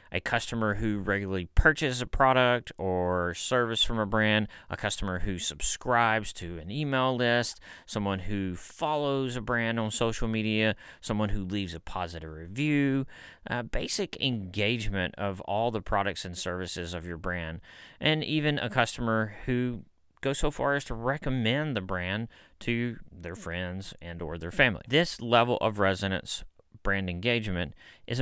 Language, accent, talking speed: English, American, 155 wpm